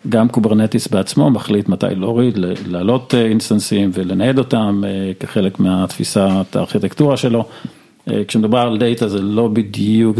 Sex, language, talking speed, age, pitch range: male, Hebrew, 125 wpm, 50-69, 105-125 Hz